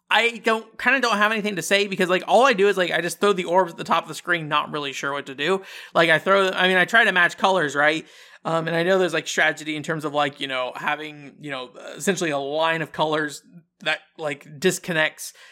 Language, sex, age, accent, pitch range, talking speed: English, male, 20-39, American, 145-185 Hz, 265 wpm